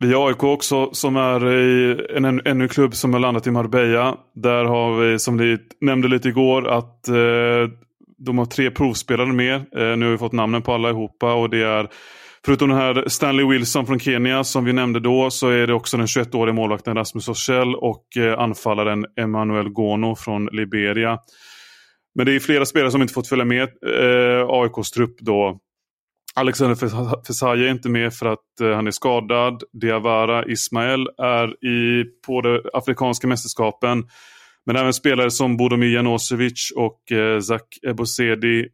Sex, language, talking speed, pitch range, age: male, Swedish, 175 wpm, 110-125 Hz, 30-49